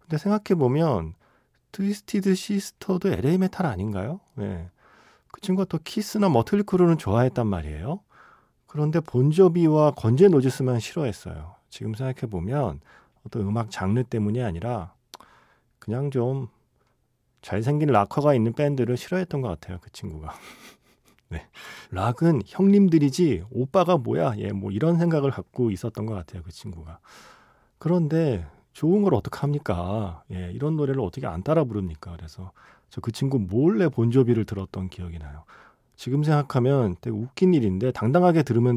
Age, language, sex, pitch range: 40-59, Korean, male, 100-155 Hz